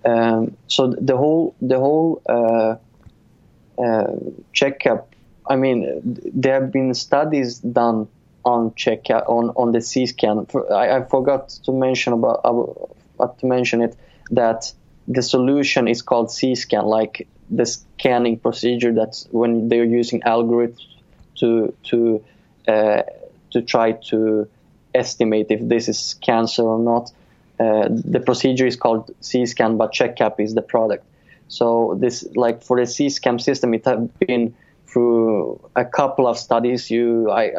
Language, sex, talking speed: English, male, 145 wpm